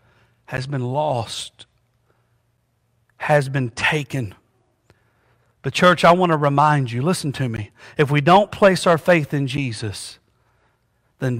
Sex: male